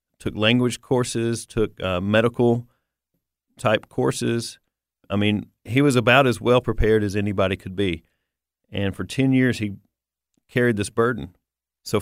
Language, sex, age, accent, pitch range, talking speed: English, male, 40-59, American, 100-120 Hz, 135 wpm